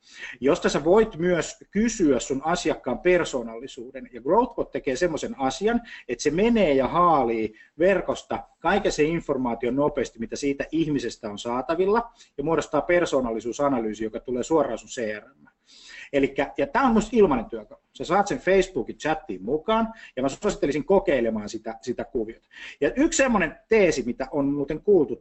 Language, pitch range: Finnish, 120-195 Hz